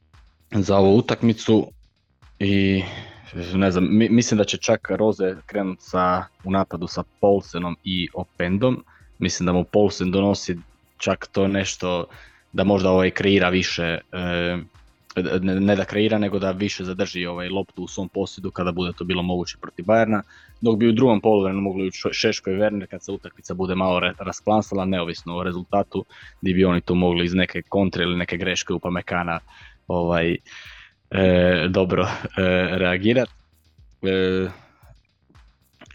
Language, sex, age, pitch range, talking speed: Croatian, male, 20-39, 90-100 Hz, 145 wpm